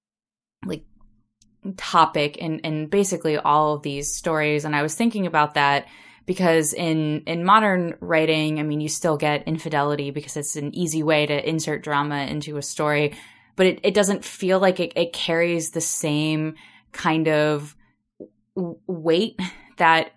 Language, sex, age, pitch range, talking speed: English, female, 10-29, 145-165 Hz, 155 wpm